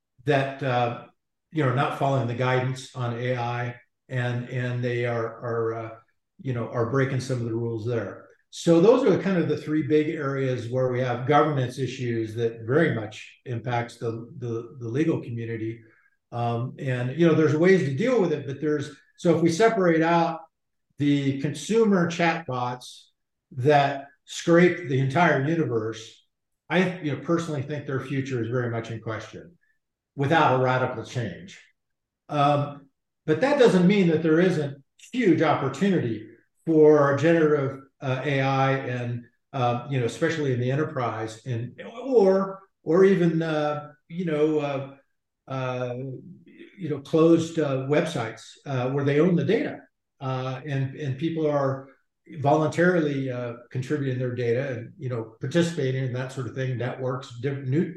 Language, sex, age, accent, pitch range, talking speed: English, male, 50-69, American, 125-155 Hz, 160 wpm